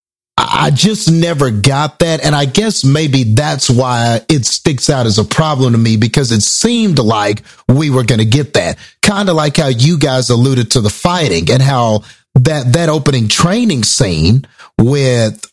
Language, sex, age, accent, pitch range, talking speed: English, male, 40-59, American, 115-150 Hz, 180 wpm